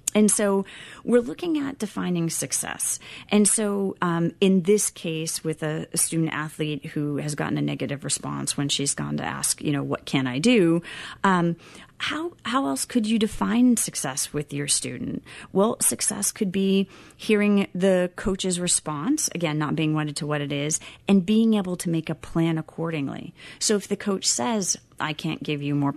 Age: 30-49